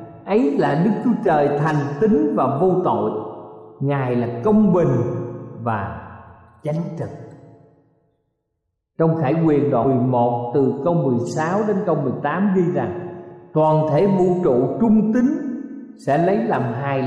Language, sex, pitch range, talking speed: Vietnamese, male, 130-200 Hz, 140 wpm